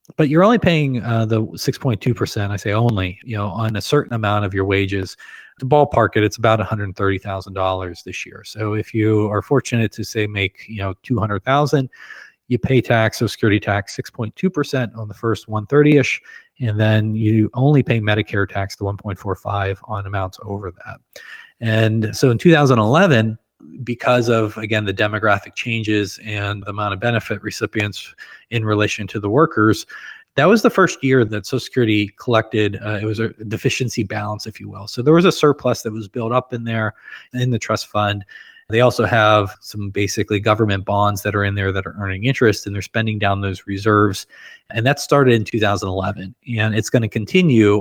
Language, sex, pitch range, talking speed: English, male, 100-120 Hz, 185 wpm